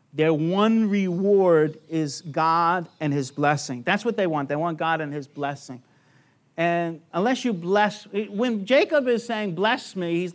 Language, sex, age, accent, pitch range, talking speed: English, male, 50-69, American, 145-190 Hz, 170 wpm